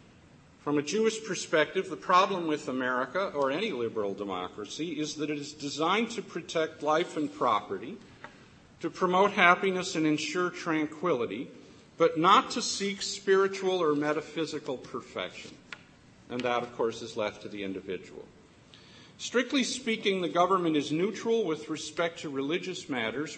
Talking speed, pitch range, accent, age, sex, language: 145 wpm, 145-195 Hz, American, 50-69, male, English